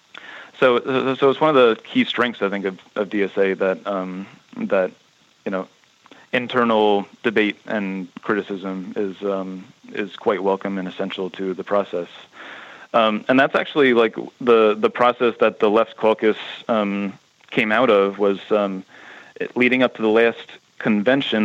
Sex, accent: male, American